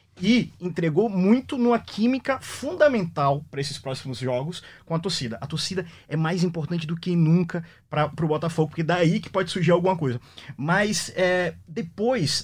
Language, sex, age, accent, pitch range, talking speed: Portuguese, male, 20-39, Brazilian, 145-190 Hz, 160 wpm